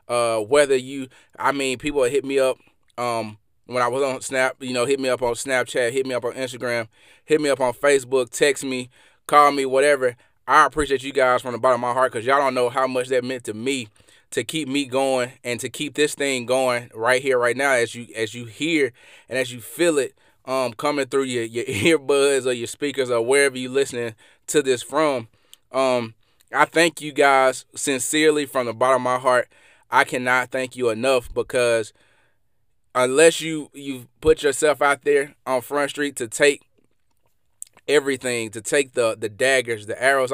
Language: English